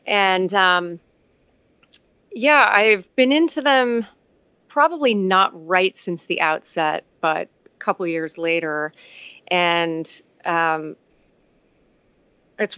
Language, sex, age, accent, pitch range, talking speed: English, female, 30-49, American, 165-205 Hz, 100 wpm